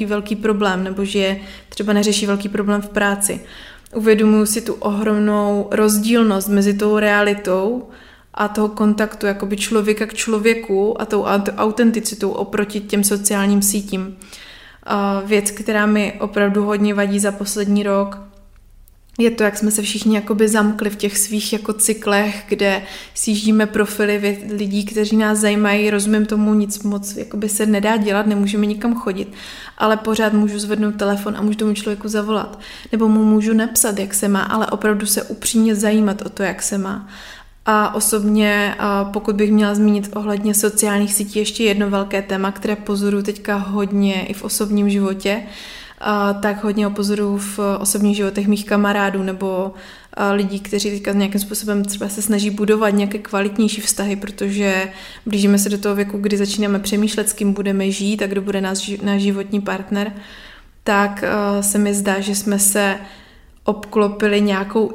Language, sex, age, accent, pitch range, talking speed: Czech, female, 20-39, native, 200-215 Hz, 155 wpm